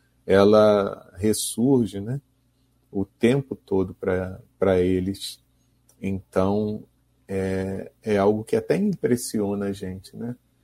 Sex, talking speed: male, 100 wpm